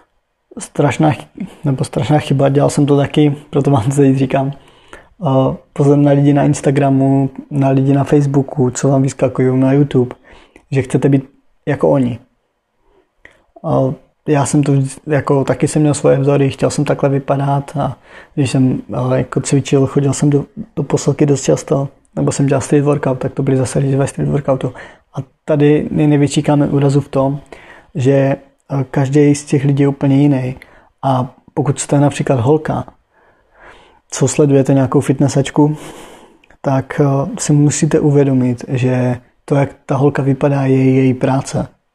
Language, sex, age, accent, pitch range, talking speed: Czech, male, 20-39, native, 135-145 Hz, 145 wpm